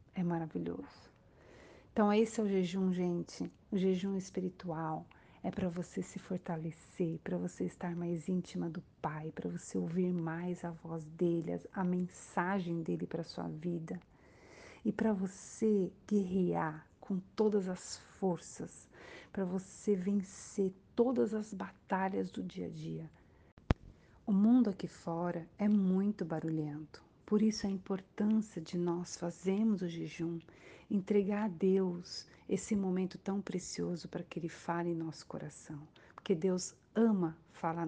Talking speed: 140 wpm